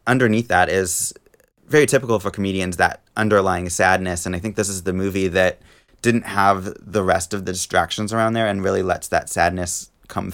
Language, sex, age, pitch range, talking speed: English, male, 20-39, 95-115 Hz, 190 wpm